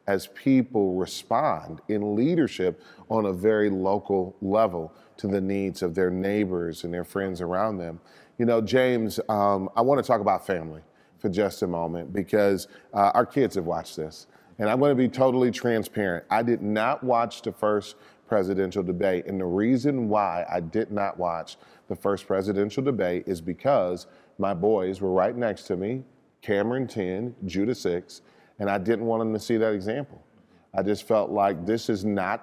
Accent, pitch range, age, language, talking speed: American, 95-110 Hz, 40-59, English, 180 wpm